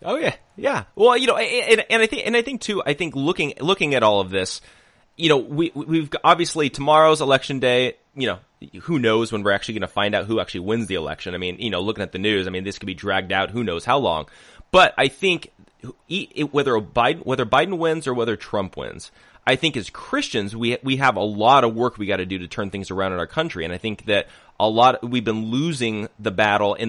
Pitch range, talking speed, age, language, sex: 100-135 Hz, 250 wpm, 30-49, English, male